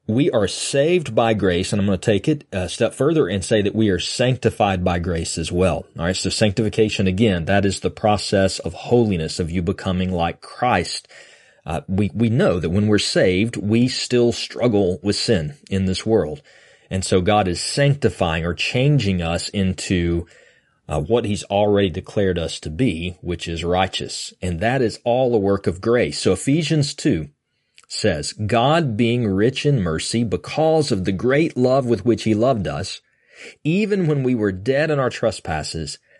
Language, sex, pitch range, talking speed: English, male, 90-120 Hz, 185 wpm